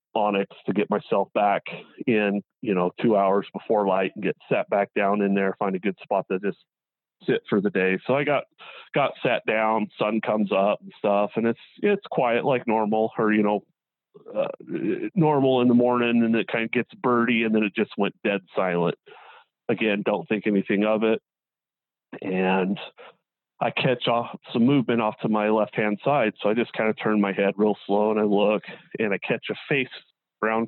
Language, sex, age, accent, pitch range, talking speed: English, male, 30-49, American, 100-120 Hz, 205 wpm